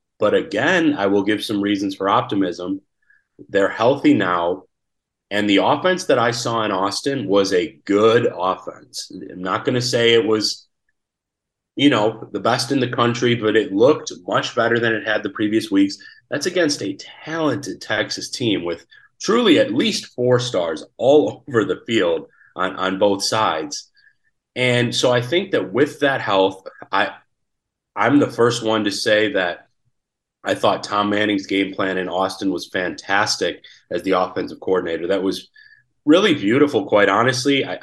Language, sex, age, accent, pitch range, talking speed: English, male, 30-49, American, 105-150 Hz, 165 wpm